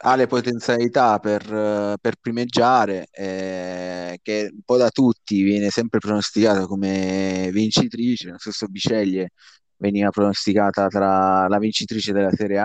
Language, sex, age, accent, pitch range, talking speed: Italian, male, 20-39, native, 95-110 Hz, 135 wpm